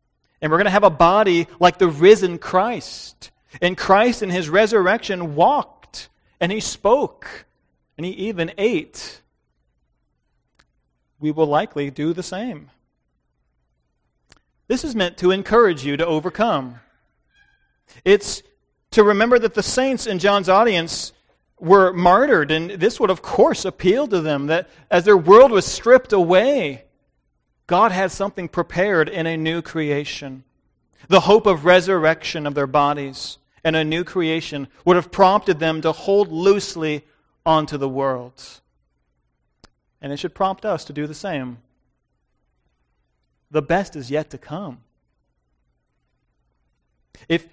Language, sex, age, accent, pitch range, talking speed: English, male, 40-59, American, 135-190 Hz, 140 wpm